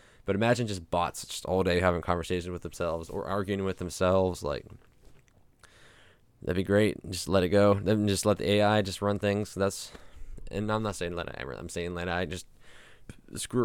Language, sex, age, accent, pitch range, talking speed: English, male, 20-39, American, 90-110 Hz, 200 wpm